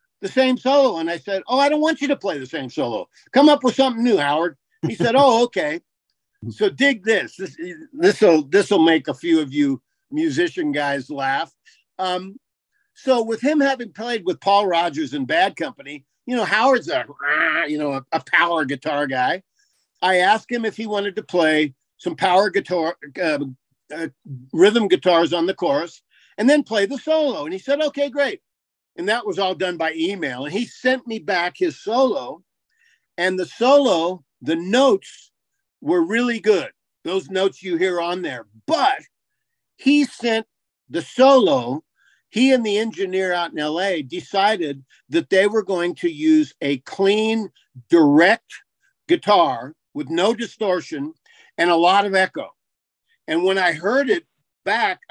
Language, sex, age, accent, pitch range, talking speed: English, male, 50-69, American, 175-295 Hz, 170 wpm